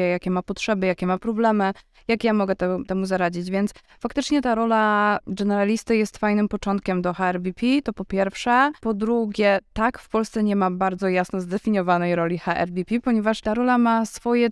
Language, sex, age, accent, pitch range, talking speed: Polish, female, 20-39, native, 185-220 Hz, 170 wpm